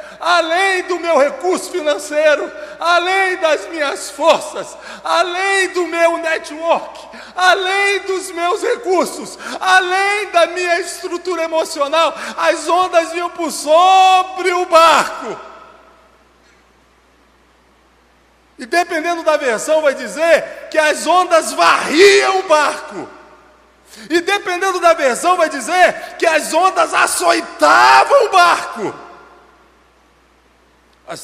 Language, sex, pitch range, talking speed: Portuguese, male, 275-355 Hz, 105 wpm